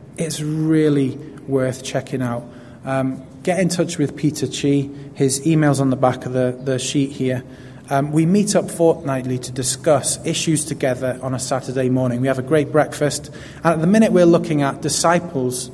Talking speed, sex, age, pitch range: 190 wpm, male, 20-39, 130-155 Hz